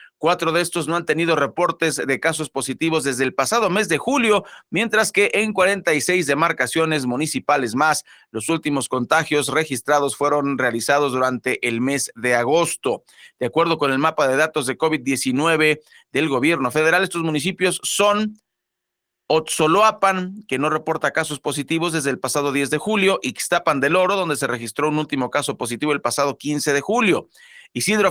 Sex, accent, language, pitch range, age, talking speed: male, Mexican, Spanish, 135-165 Hz, 40-59, 165 wpm